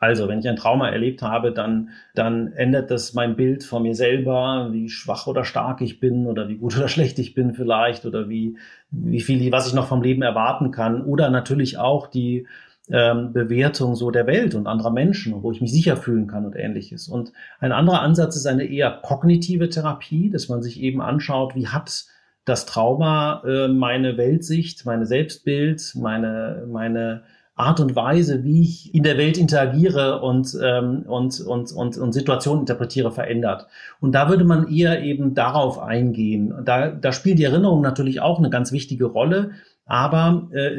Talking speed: 180 wpm